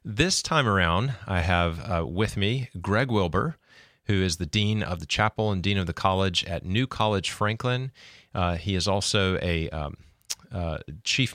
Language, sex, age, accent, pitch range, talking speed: English, male, 30-49, American, 90-110 Hz, 180 wpm